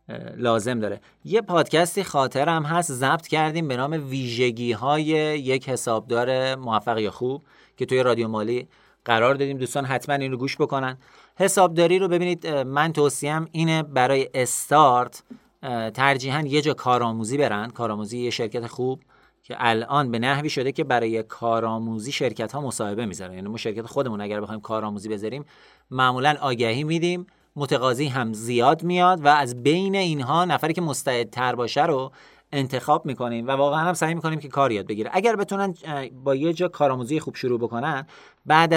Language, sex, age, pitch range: Persian, male, 40-59, 125-160 Hz